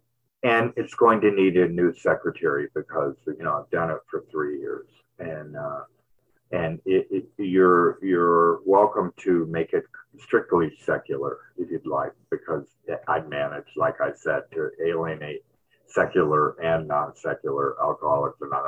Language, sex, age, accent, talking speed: English, male, 50-69, American, 150 wpm